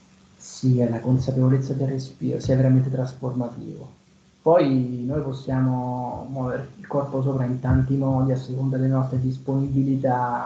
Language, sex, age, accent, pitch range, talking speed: Italian, male, 30-49, native, 125-140 Hz, 125 wpm